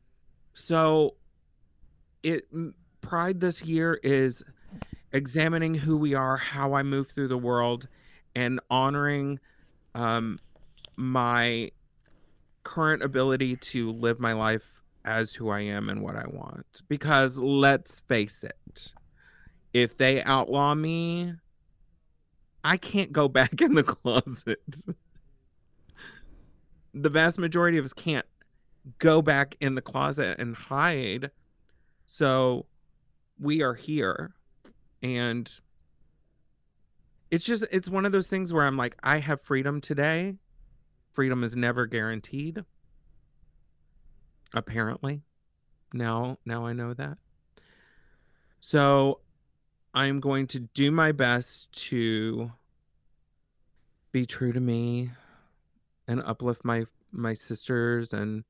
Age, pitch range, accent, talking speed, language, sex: 40-59, 115-150 Hz, American, 110 wpm, English, male